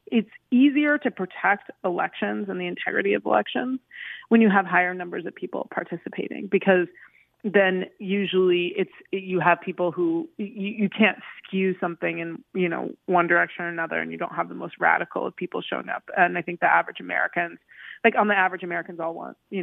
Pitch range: 170-195 Hz